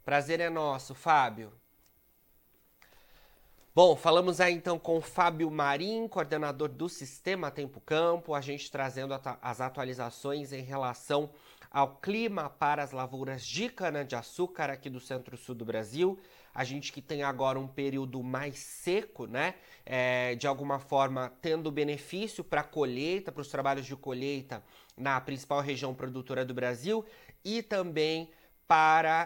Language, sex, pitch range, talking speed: Portuguese, male, 130-160 Hz, 140 wpm